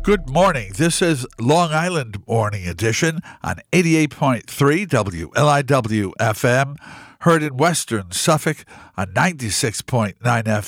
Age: 50-69